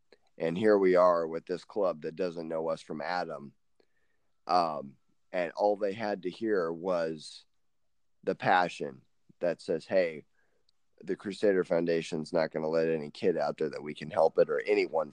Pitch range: 85-115 Hz